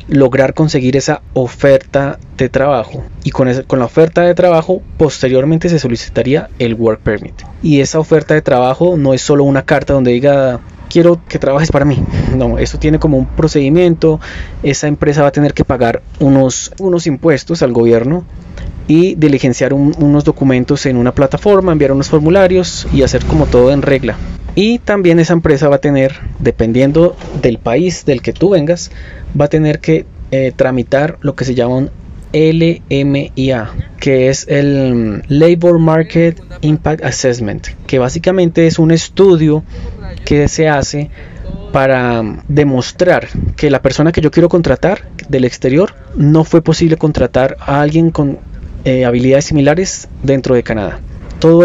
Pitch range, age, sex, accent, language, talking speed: 130-160 Hz, 20-39, male, Colombian, Spanish, 160 wpm